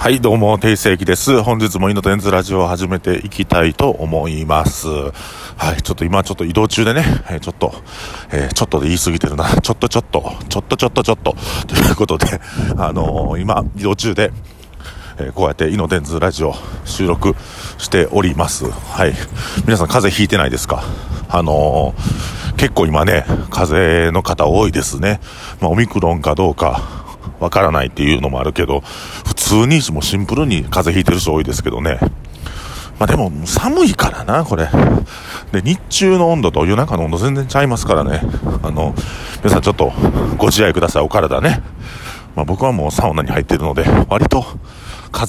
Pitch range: 80-105 Hz